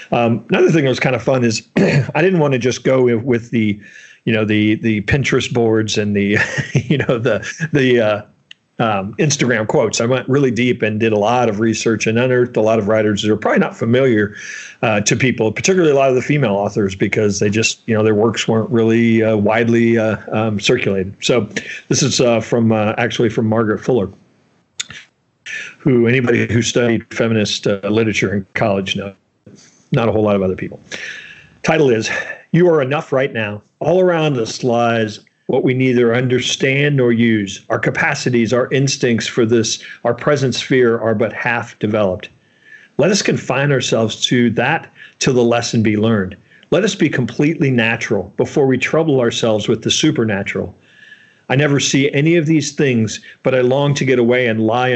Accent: American